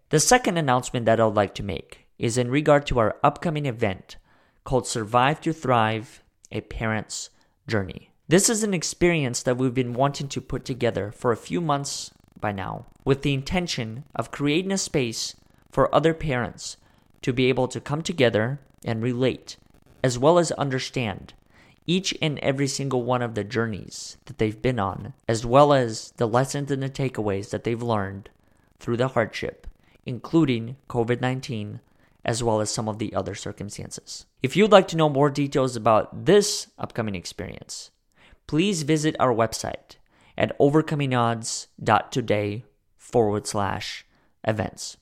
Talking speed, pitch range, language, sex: 155 wpm, 110-145 Hz, English, male